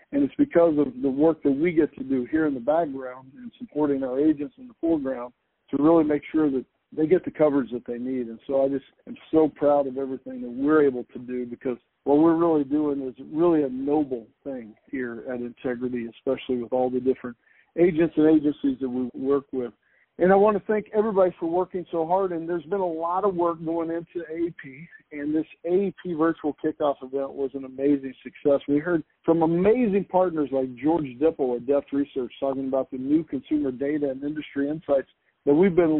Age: 50-69